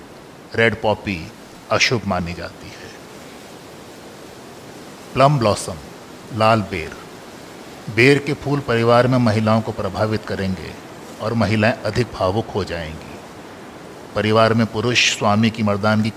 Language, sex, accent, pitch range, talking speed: Hindi, male, native, 100-120 Hz, 115 wpm